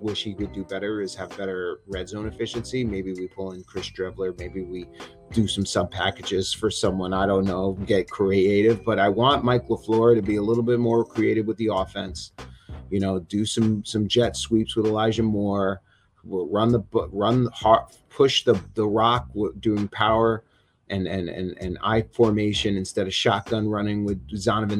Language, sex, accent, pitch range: English, male, American, 100-120 Hz